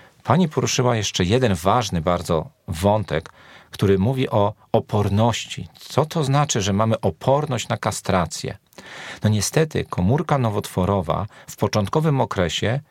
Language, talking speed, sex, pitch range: Polish, 120 wpm, male, 95-115 Hz